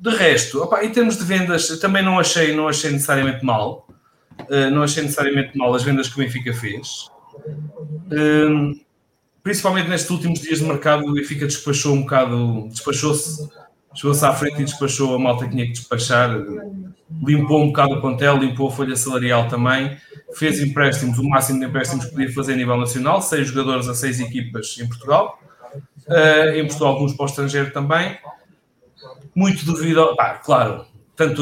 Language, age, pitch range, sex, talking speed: English, 20-39, 125-155 Hz, male, 170 wpm